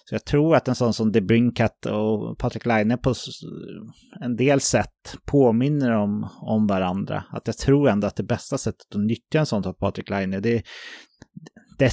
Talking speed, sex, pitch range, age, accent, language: 180 wpm, male, 100-130 Hz, 30-49, Swedish, English